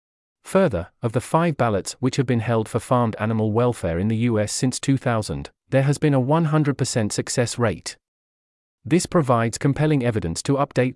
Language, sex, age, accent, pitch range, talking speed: English, male, 40-59, British, 110-140 Hz, 170 wpm